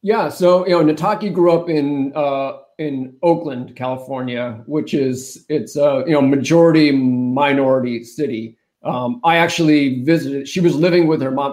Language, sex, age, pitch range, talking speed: English, male, 30-49, 135-165 Hz, 160 wpm